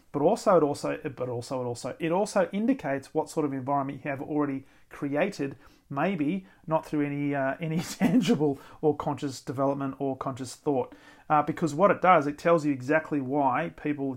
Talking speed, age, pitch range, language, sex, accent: 180 wpm, 40-59, 135-155 Hz, English, male, Australian